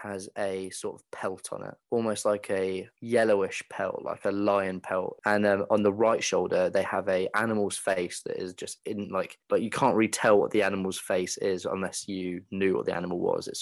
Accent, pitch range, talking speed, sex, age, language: British, 95-110 Hz, 220 wpm, male, 20-39, English